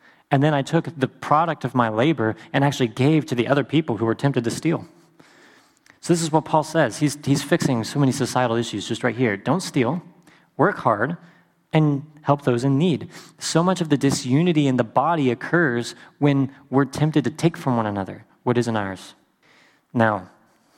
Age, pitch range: 30-49, 120-145 Hz